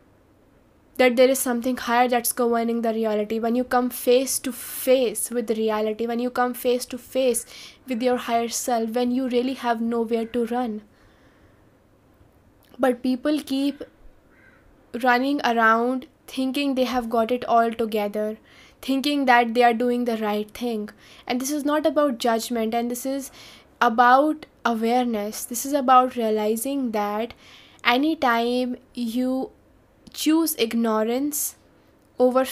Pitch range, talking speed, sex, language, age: 230-260 Hz, 140 wpm, female, English, 10-29